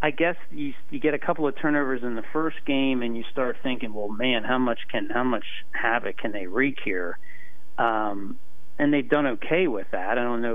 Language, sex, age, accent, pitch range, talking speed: English, male, 40-59, American, 100-135 Hz, 220 wpm